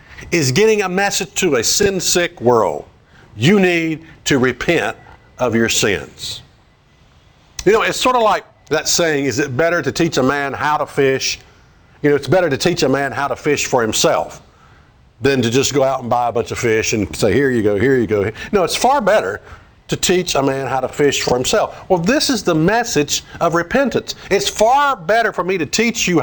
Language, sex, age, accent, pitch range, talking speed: English, male, 50-69, American, 130-185 Hz, 215 wpm